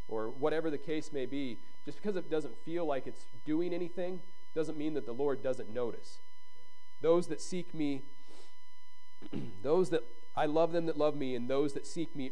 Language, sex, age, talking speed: English, male, 40-59, 190 wpm